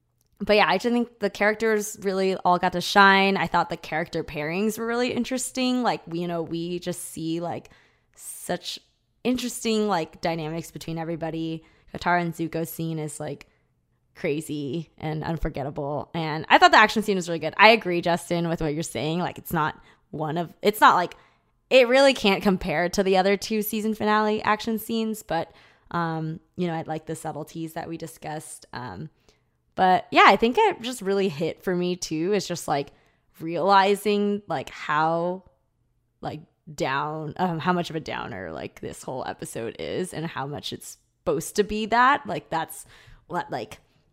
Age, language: 20-39, English